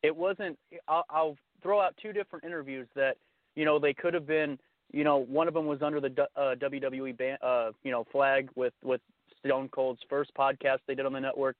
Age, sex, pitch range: 30-49, male, 130-155 Hz